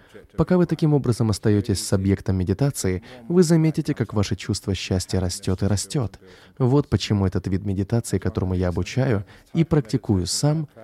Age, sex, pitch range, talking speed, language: 20-39, male, 95-140 Hz, 155 wpm, Russian